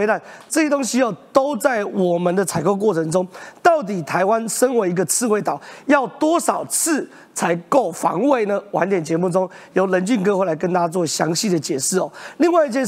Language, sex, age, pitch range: Chinese, male, 30-49, 190-265 Hz